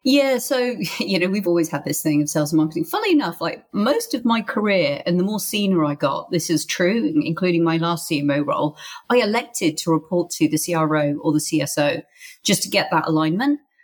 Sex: female